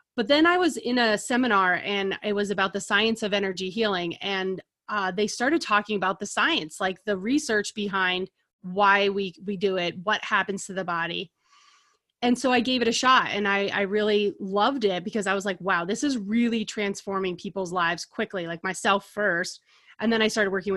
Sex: female